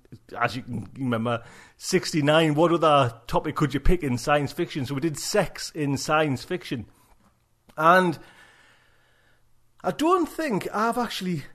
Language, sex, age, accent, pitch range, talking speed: English, male, 30-49, British, 135-195 Hz, 140 wpm